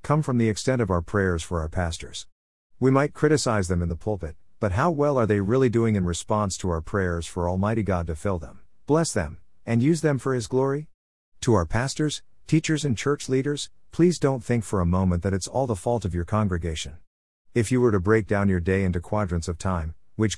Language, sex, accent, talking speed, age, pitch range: English, male, American, 225 wpm, 50-69, 90-125 Hz